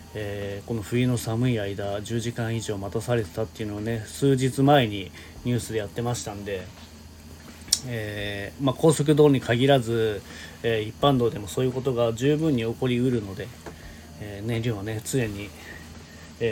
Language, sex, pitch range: Japanese, male, 85-125 Hz